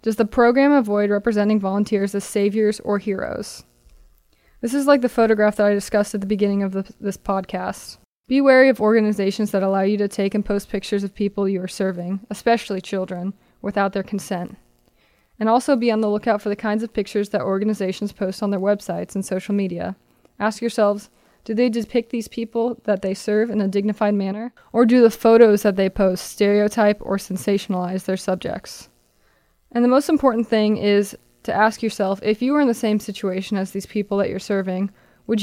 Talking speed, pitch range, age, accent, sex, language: 195 wpm, 195-225 Hz, 20-39, American, female, English